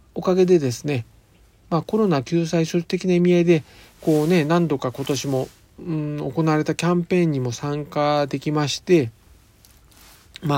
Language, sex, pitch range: Japanese, male, 125-170 Hz